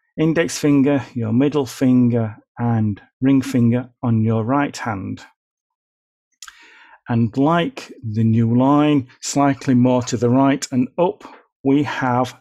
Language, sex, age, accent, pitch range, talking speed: English, male, 40-59, British, 120-145 Hz, 125 wpm